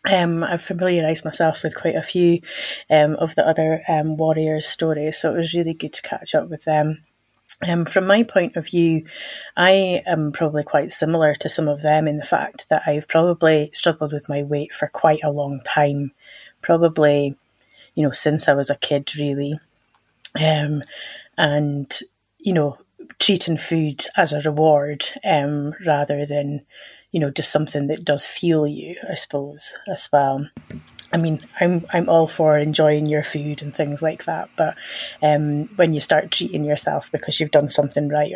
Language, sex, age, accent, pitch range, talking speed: English, female, 30-49, British, 150-165 Hz, 175 wpm